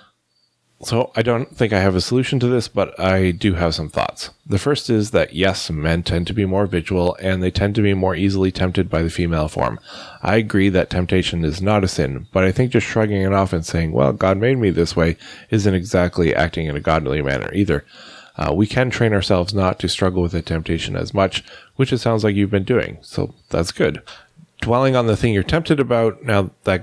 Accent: American